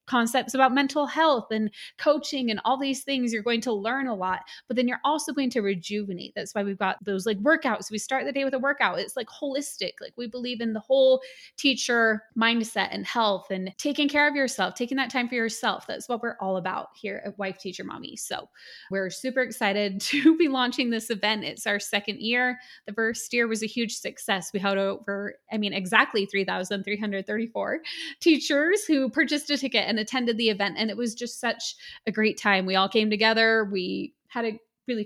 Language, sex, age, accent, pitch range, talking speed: English, female, 20-39, American, 205-265 Hz, 210 wpm